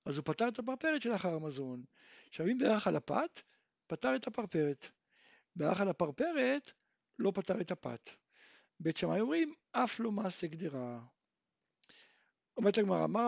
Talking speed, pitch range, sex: 120 wpm, 175-240 Hz, male